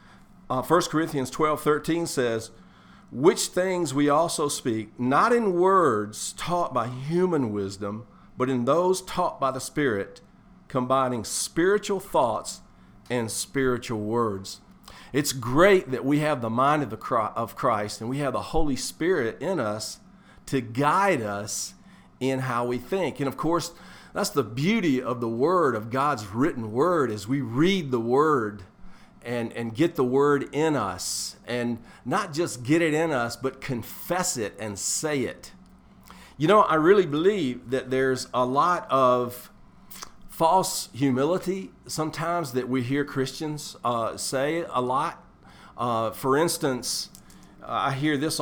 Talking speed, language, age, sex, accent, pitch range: 150 wpm, English, 50-69, male, American, 125-165 Hz